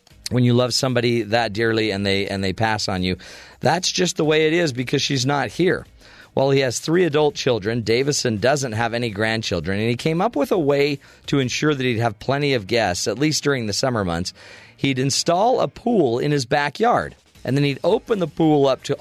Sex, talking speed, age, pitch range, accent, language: male, 220 wpm, 40-59, 110-150 Hz, American, English